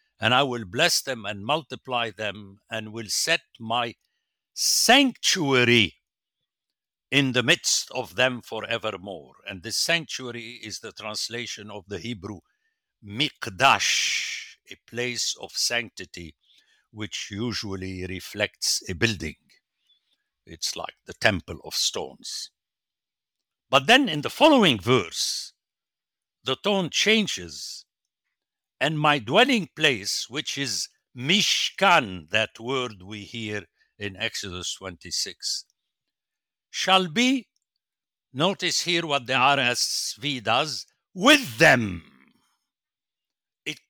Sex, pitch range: male, 105-165 Hz